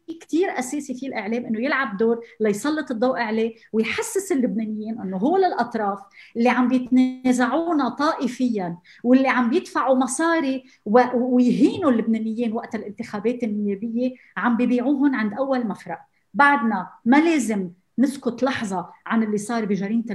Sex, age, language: female, 30-49, Arabic